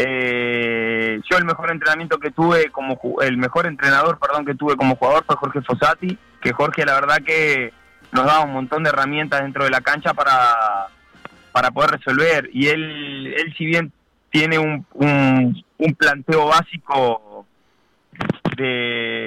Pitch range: 125-165 Hz